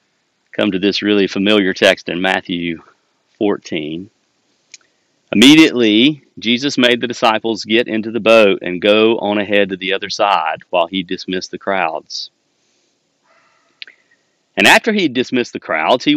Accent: American